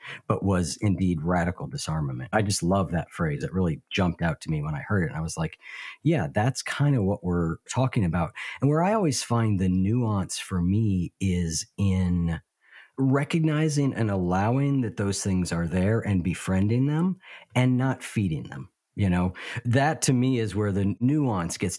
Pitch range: 90-120 Hz